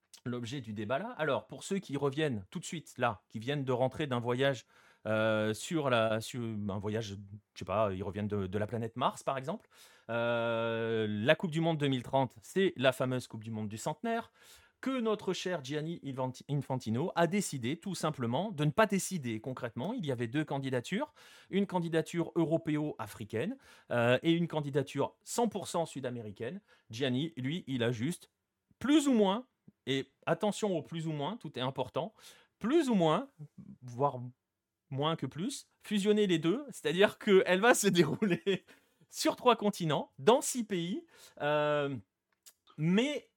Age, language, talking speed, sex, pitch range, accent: 30-49, French, 165 wpm, male, 125-190 Hz, French